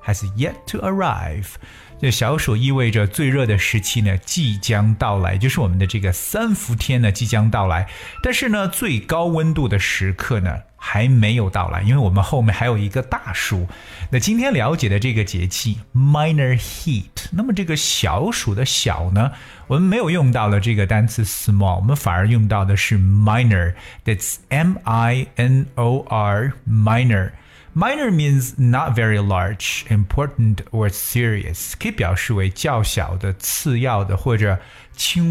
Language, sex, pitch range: Chinese, male, 100-135 Hz